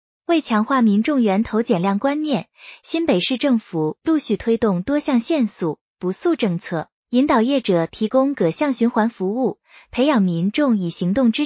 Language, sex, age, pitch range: Chinese, female, 20-39, 195-280 Hz